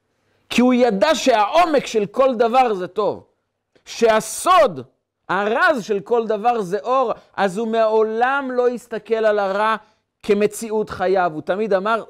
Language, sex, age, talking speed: Hebrew, male, 40-59, 140 wpm